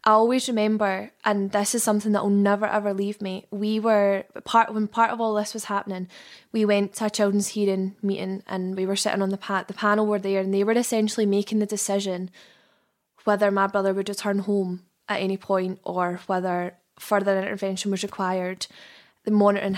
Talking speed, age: 195 wpm, 10-29